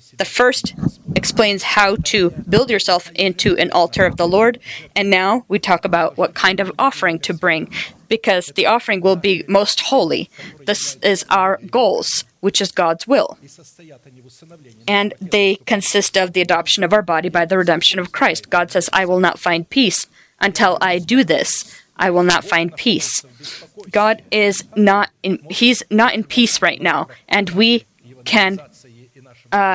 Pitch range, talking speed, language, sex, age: 170-205 Hz, 160 wpm, English, female, 20-39